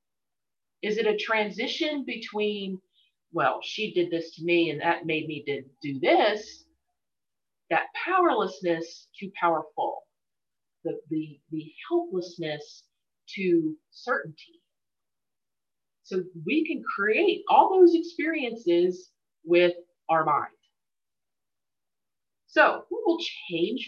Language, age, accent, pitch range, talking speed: English, 40-59, American, 170-245 Hz, 105 wpm